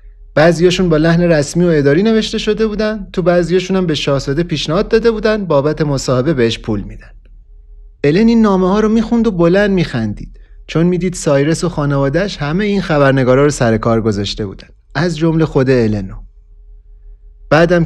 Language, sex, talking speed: Persian, male, 165 wpm